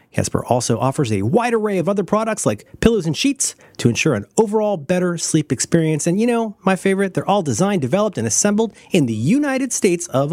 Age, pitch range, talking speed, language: 40-59, 140-205 Hz, 210 wpm, English